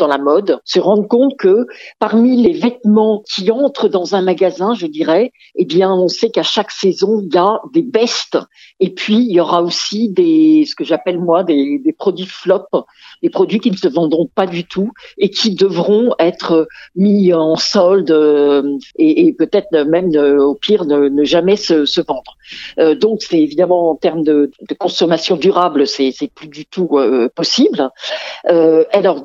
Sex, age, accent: female, 50-69, French